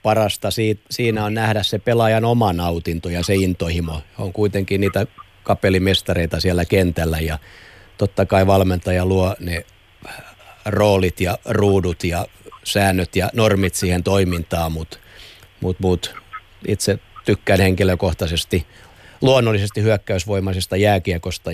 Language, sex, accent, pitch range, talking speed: Finnish, male, native, 90-105 Hz, 115 wpm